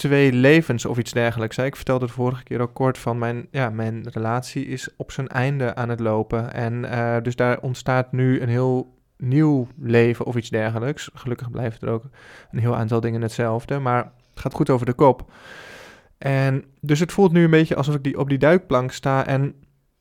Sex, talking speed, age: male, 205 wpm, 20-39